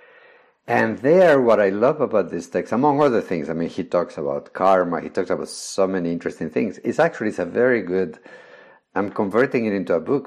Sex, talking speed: male, 205 wpm